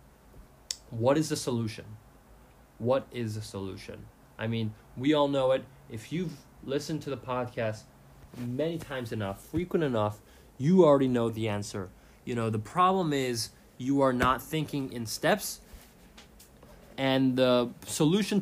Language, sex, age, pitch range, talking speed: English, male, 20-39, 110-150 Hz, 145 wpm